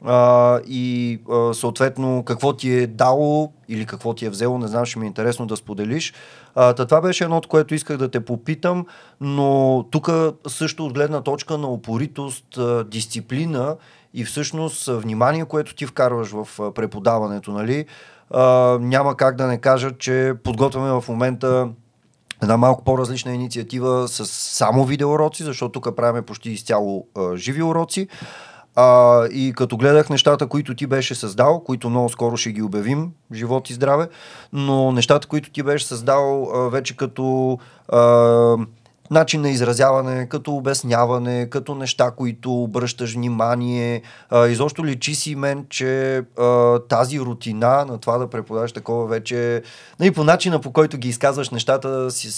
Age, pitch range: 40-59, 120-140 Hz